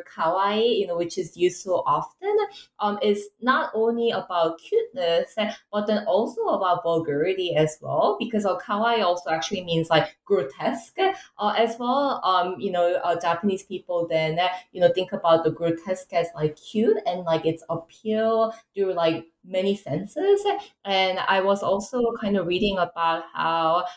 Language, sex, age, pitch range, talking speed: English, female, 20-39, 170-215 Hz, 165 wpm